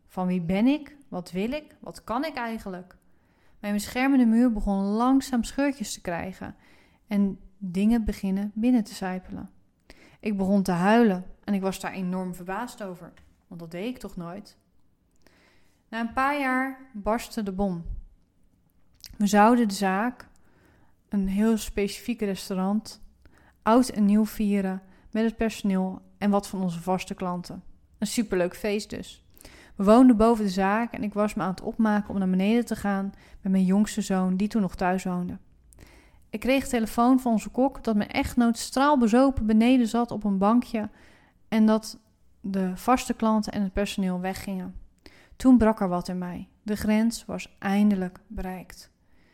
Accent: Dutch